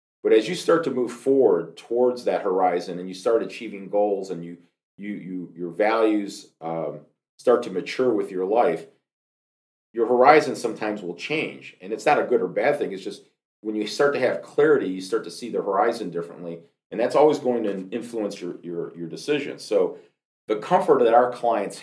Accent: American